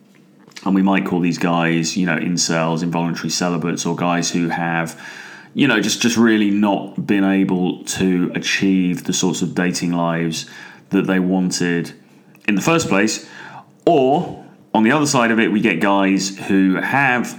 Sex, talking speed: male, 170 wpm